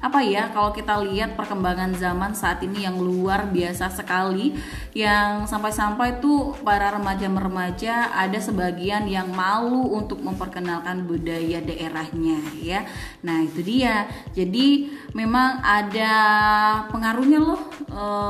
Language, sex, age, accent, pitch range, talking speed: Indonesian, female, 20-39, native, 180-245 Hz, 120 wpm